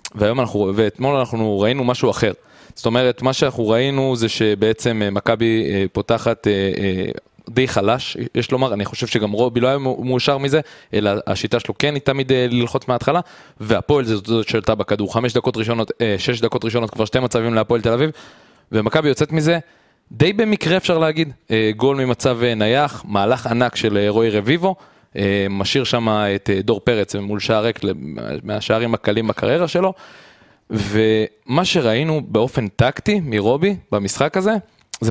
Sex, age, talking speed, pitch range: male, 20-39, 150 wpm, 110-135 Hz